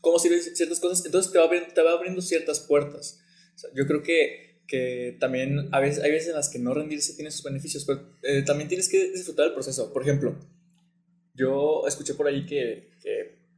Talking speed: 210 wpm